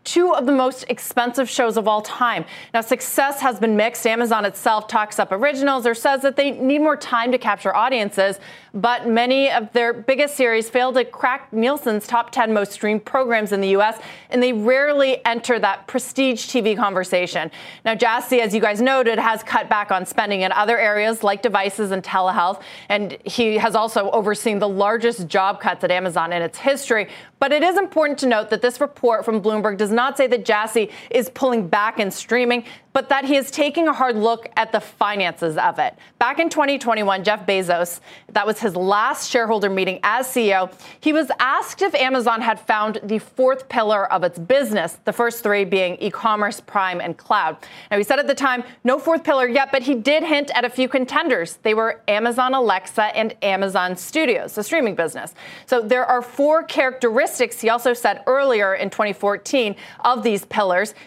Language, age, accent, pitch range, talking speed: English, 30-49, American, 205-255 Hz, 195 wpm